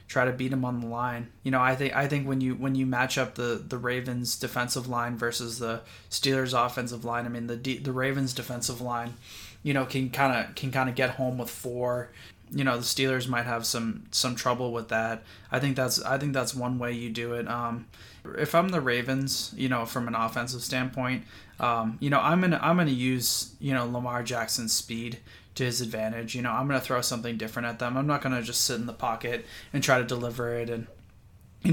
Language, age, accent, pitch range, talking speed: English, 20-39, American, 120-130 Hz, 235 wpm